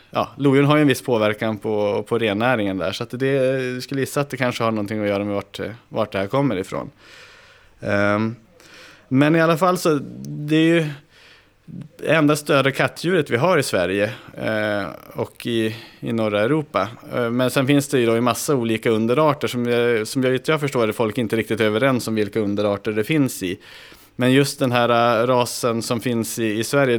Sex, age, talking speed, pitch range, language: male, 30-49, 205 wpm, 105-135 Hz, Swedish